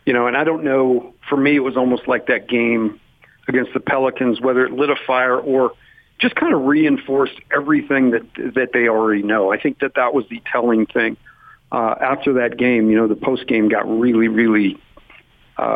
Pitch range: 115-140 Hz